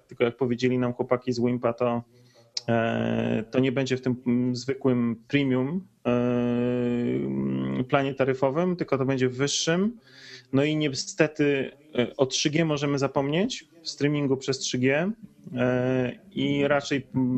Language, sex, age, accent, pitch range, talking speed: Polish, male, 30-49, native, 115-135 Hz, 120 wpm